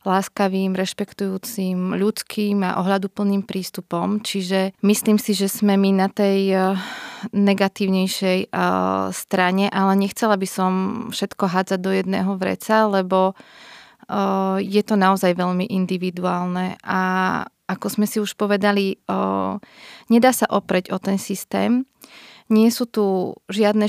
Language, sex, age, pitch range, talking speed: Slovak, female, 30-49, 190-205 Hz, 120 wpm